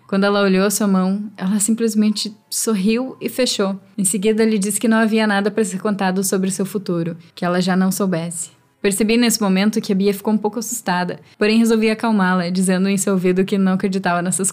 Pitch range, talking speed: 185-215 Hz, 210 wpm